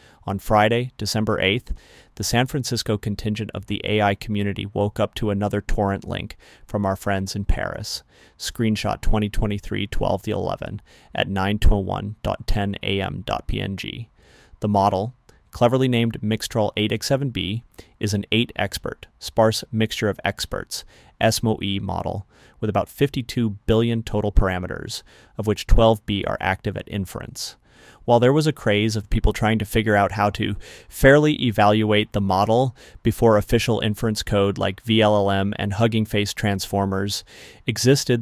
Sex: male